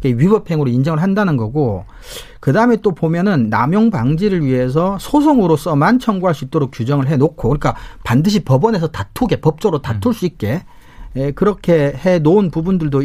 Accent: native